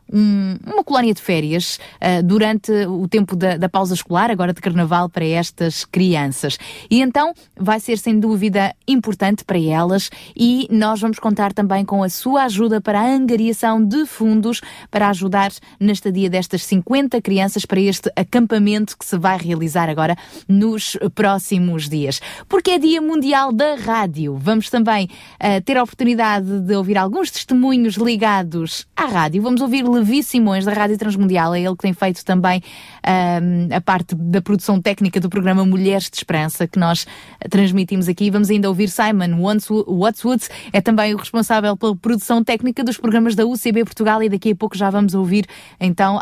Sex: female